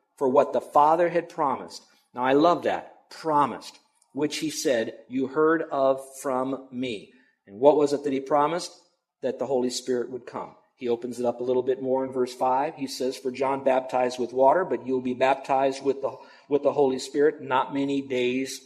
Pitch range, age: 130-155 Hz, 50-69